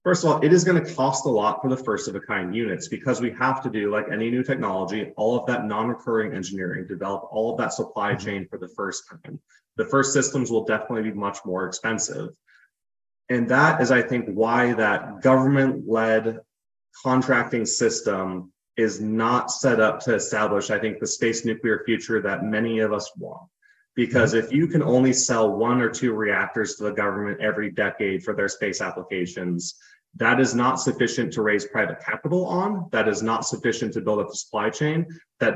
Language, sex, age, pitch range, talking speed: English, male, 20-39, 110-130 Hz, 195 wpm